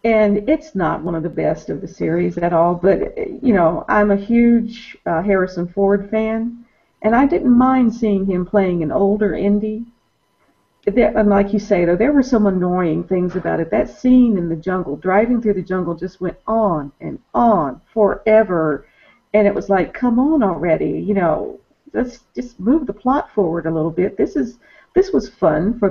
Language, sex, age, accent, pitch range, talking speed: English, female, 50-69, American, 180-230 Hz, 190 wpm